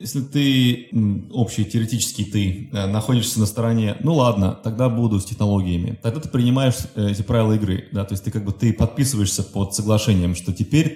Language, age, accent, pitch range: Russian, 30-49, native, 100-120 Hz